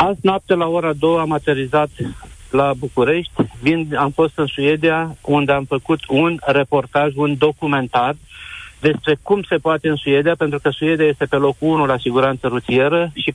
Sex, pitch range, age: male, 145-170 Hz, 50-69